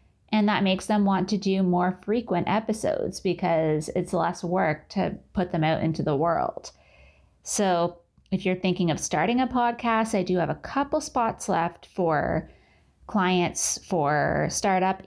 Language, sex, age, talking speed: English, female, 20-39, 160 wpm